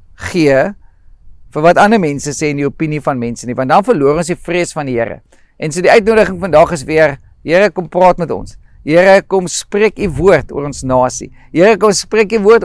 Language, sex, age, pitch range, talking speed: English, male, 50-69, 155-215 Hz, 220 wpm